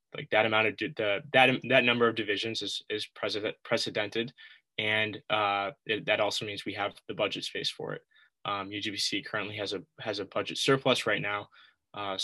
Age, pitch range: 10-29, 100-115 Hz